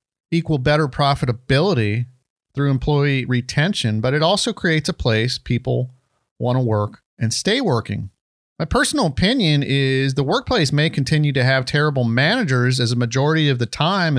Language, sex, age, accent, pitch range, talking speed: English, male, 40-59, American, 125-160 Hz, 150 wpm